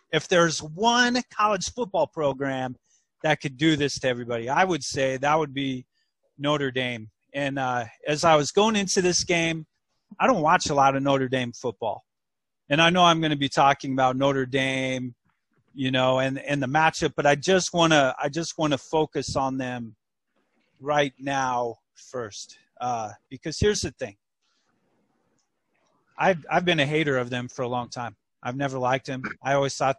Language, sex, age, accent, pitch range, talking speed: English, male, 30-49, American, 130-155 Hz, 180 wpm